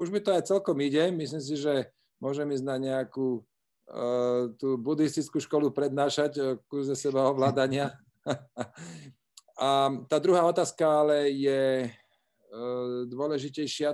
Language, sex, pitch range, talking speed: Slovak, male, 125-140 Hz, 125 wpm